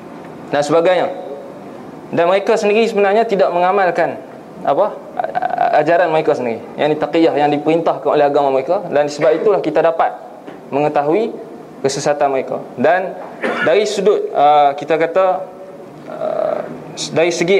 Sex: male